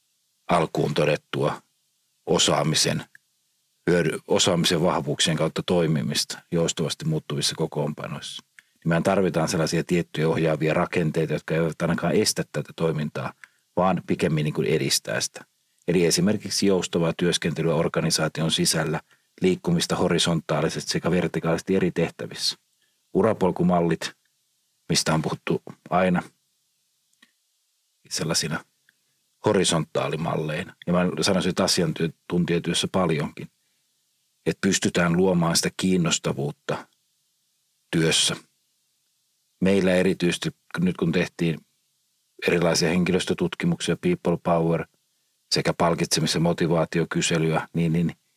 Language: Finnish